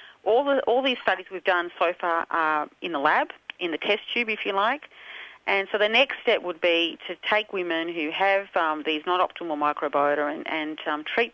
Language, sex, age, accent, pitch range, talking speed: English, female, 40-59, Australian, 160-210 Hz, 205 wpm